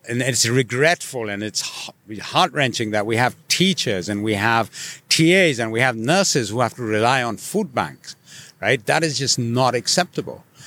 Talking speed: 175 wpm